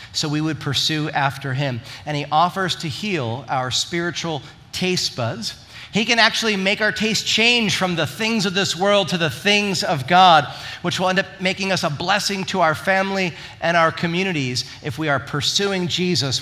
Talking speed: 190 wpm